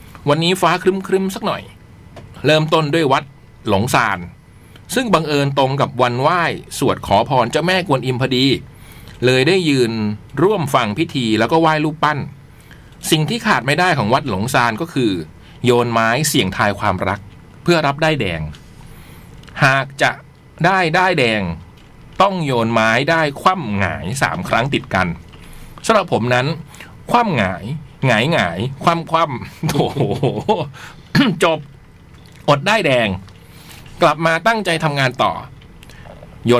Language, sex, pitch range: Thai, male, 105-155 Hz